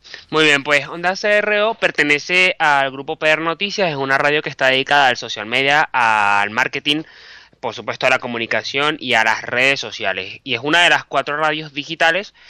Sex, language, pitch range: male, Spanish, 135-175 Hz